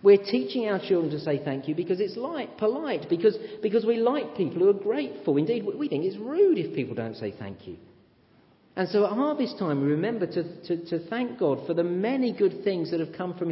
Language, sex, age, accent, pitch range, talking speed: English, male, 40-59, British, 130-215 Hz, 230 wpm